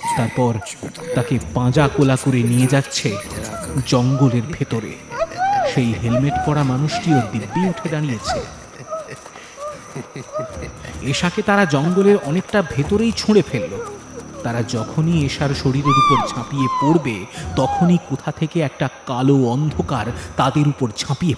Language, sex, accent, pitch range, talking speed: Bengali, male, native, 120-160 Hz, 105 wpm